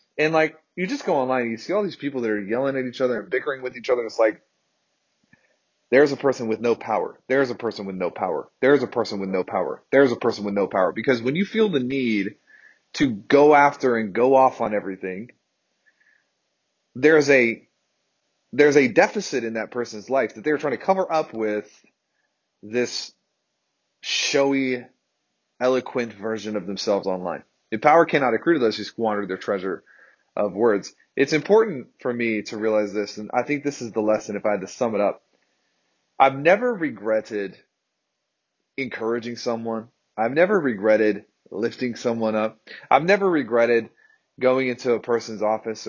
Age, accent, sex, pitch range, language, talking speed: 30-49, American, male, 110-135 Hz, English, 180 wpm